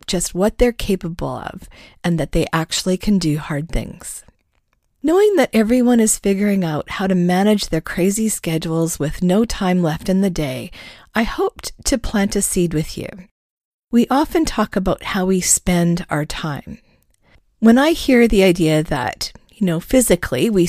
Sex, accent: female, American